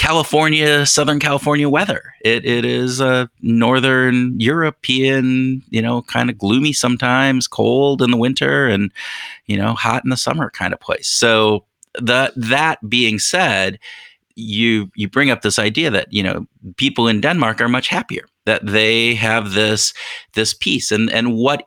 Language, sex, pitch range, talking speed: English, male, 105-135 Hz, 165 wpm